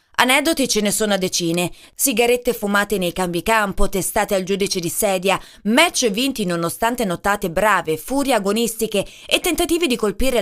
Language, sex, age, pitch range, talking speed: Italian, female, 20-39, 195-275 Hz, 155 wpm